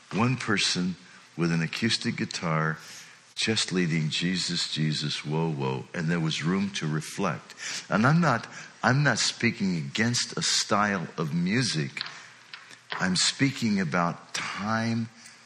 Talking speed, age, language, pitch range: 130 wpm, 60-79, English, 105-170 Hz